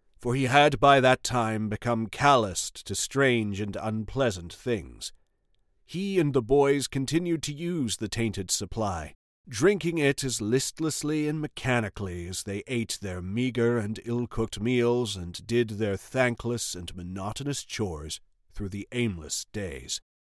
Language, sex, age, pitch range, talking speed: English, male, 40-59, 95-130 Hz, 140 wpm